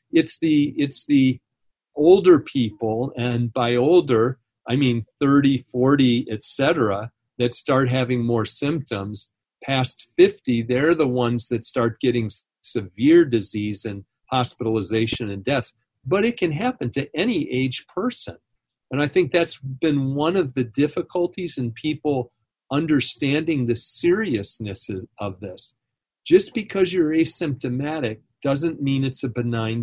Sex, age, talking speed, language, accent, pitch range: male, 40-59, 135 wpm, English, American, 115-150 Hz